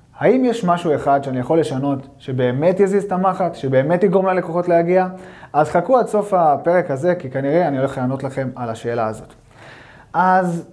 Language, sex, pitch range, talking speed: Hebrew, male, 135-175 Hz, 175 wpm